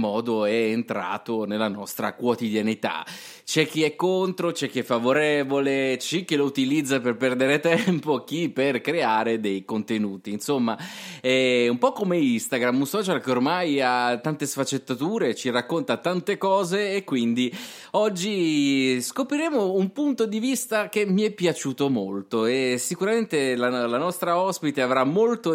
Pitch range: 120-160 Hz